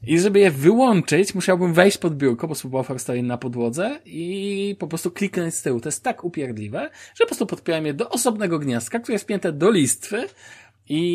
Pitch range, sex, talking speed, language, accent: 120-165 Hz, male, 200 wpm, Polish, native